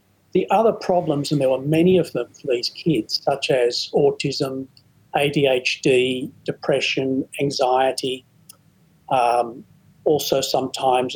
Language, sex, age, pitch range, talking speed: English, male, 50-69, 130-160 Hz, 115 wpm